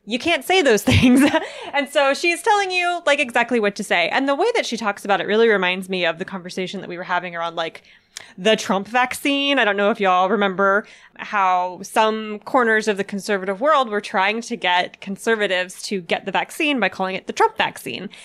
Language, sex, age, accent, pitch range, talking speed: English, female, 20-39, American, 190-255 Hz, 220 wpm